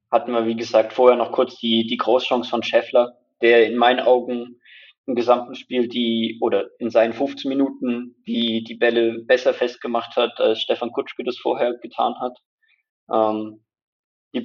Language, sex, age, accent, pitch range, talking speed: German, male, 20-39, German, 115-125 Hz, 165 wpm